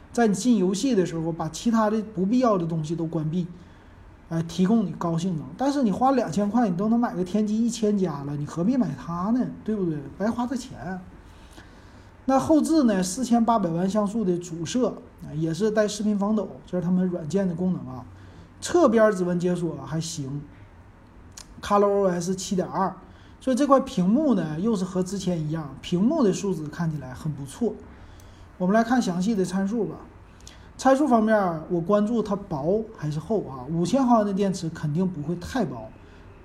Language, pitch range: Chinese, 155-215 Hz